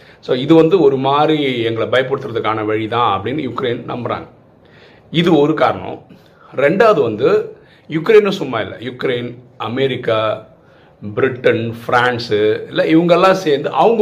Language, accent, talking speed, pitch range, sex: Tamil, native, 115 wpm, 115-165 Hz, male